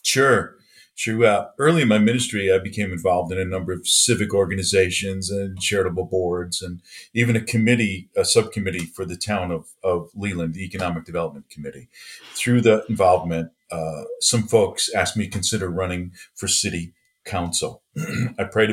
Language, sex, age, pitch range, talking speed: English, male, 40-59, 90-110 Hz, 165 wpm